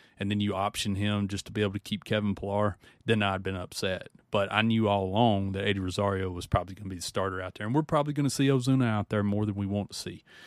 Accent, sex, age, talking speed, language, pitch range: American, male, 30-49, 280 wpm, English, 95-115 Hz